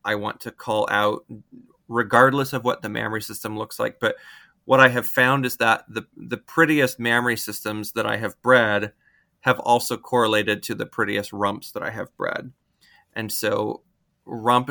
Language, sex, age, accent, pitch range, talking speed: English, male, 30-49, American, 110-125 Hz, 175 wpm